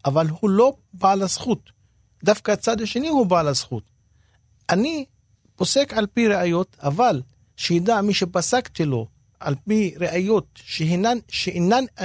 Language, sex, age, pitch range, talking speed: Hebrew, male, 40-59, 145-205 Hz, 130 wpm